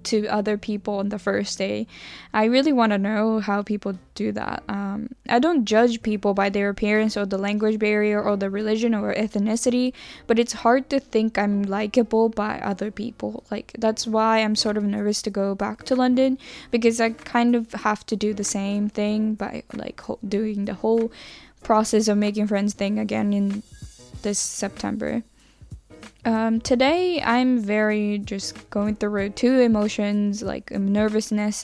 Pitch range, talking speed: 205-230 Hz, 170 wpm